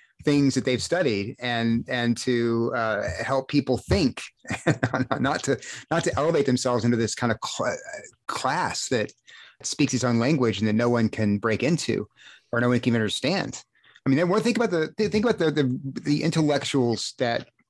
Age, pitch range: 30-49, 110-135 Hz